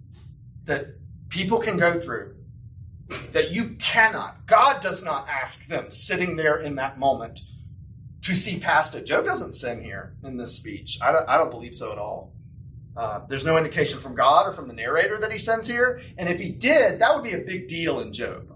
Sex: male